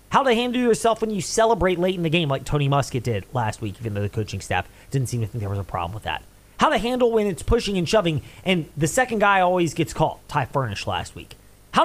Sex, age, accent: male, 30-49, American